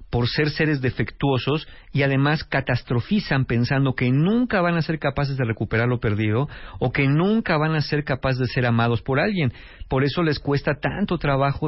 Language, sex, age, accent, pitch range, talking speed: Spanish, male, 50-69, Mexican, 125-155 Hz, 185 wpm